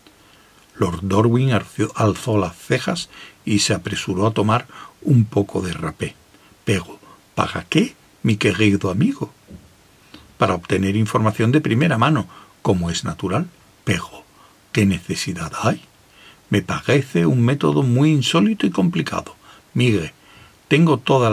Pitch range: 105-145 Hz